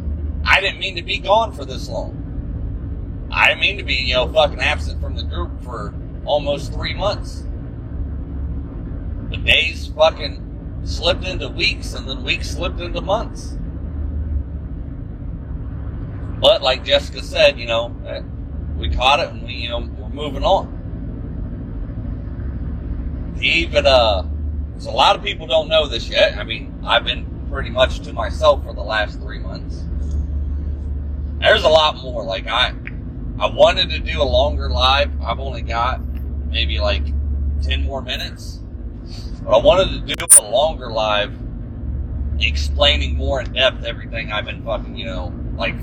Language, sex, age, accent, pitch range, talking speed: English, male, 40-59, American, 70-95 Hz, 150 wpm